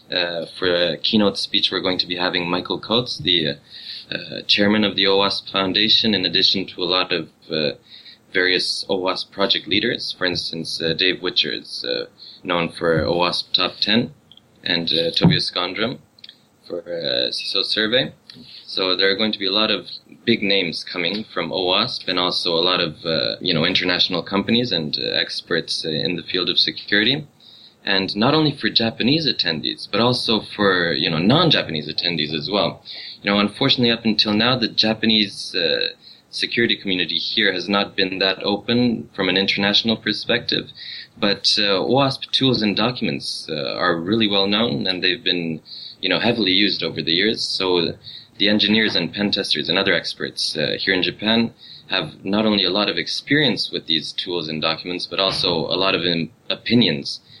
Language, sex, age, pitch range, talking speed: English, male, 20-39, 90-110 Hz, 180 wpm